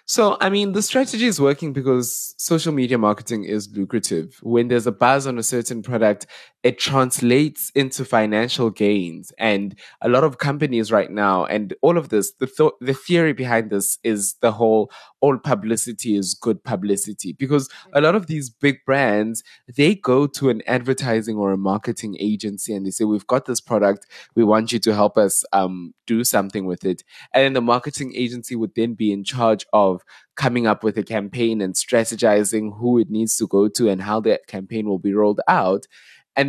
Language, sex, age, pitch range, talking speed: English, male, 20-39, 105-135 Hz, 195 wpm